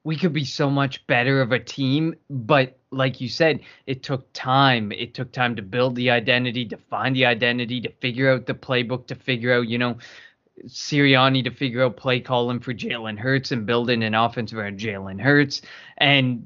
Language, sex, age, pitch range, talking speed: English, male, 20-39, 120-140 Hz, 195 wpm